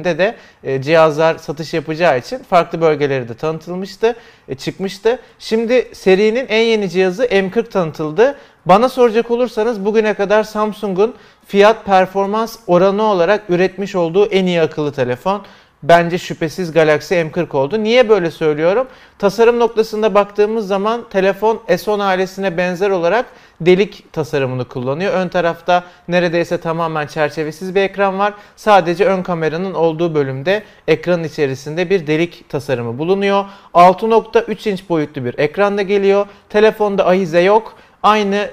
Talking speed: 130 wpm